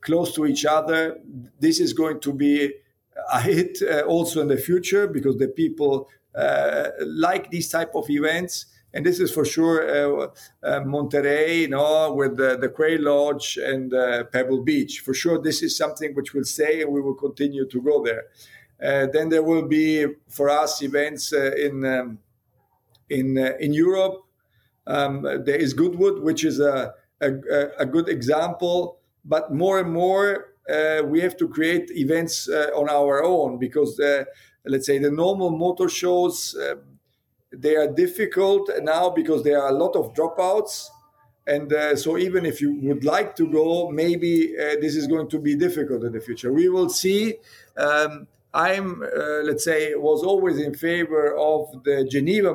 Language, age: English, 50-69